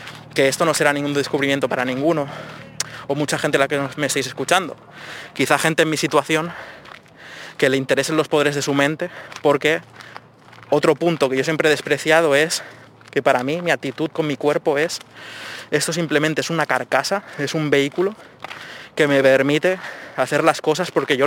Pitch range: 135-160 Hz